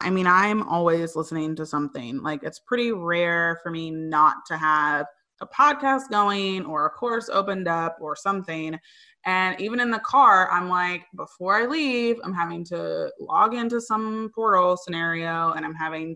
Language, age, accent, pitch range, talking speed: English, 20-39, American, 165-205 Hz, 175 wpm